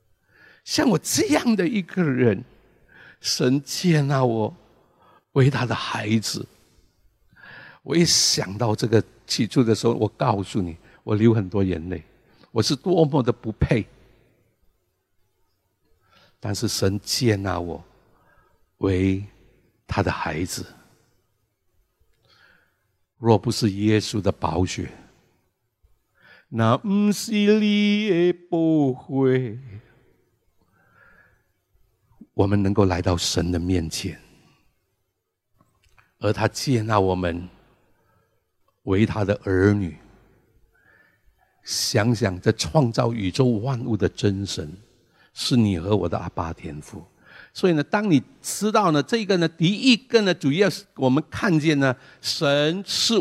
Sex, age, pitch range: male, 60-79, 95-145 Hz